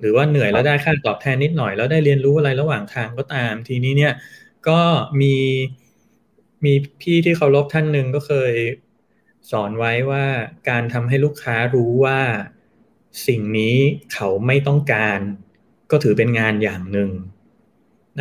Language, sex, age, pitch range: Thai, male, 20-39, 120-155 Hz